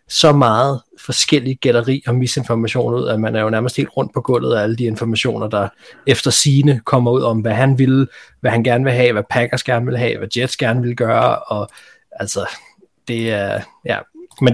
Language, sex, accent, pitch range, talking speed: Danish, male, native, 110-130 Hz, 205 wpm